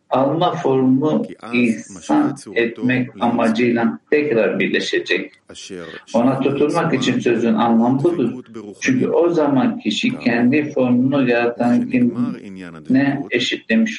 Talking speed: 95 wpm